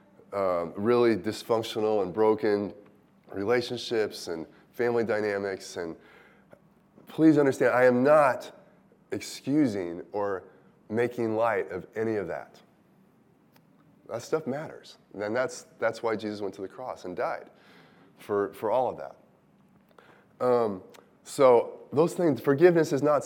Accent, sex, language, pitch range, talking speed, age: American, male, English, 95-125 Hz, 125 wpm, 20-39